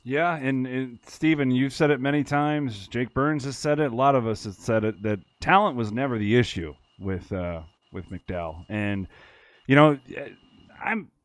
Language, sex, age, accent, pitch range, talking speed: English, male, 30-49, American, 115-190 Hz, 185 wpm